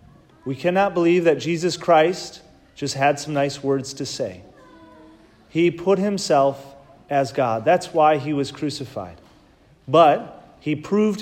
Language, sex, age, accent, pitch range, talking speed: English, male, 30-49, American, 135-175 Hz, 140 wpm